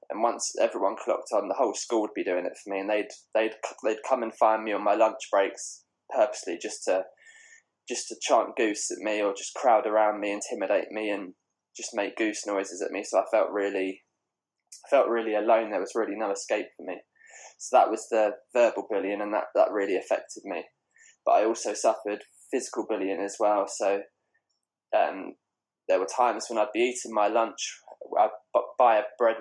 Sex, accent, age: male, British, 20-39